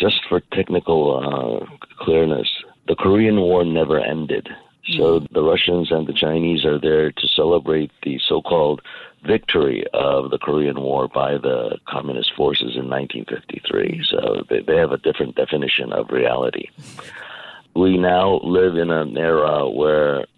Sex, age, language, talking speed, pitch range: male, 50-69, English, 145 wpm, 80-95 Hz